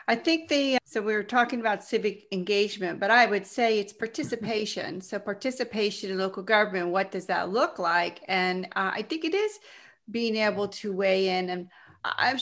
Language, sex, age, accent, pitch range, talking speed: English, female, 40-59, American, 180-220 Hz, 190 wpm